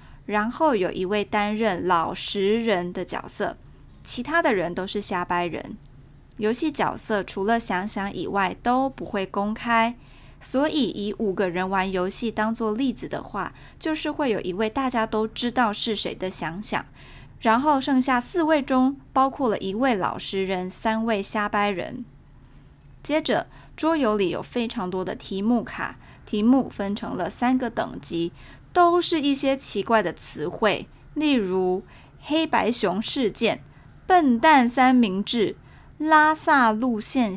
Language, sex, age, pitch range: Chinese, female, 20-39, 200-255 Hz